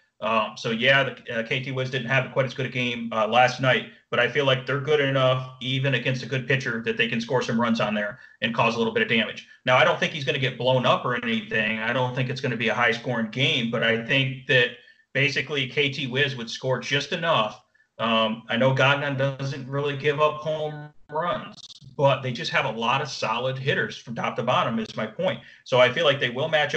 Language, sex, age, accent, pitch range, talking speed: English, male, 30-49, American, 120-140 Hz, 245 wpm